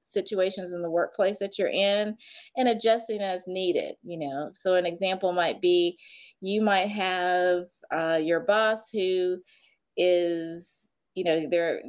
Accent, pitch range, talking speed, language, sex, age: American, 170-215 Hz, 145 wpm, English, female, 30-49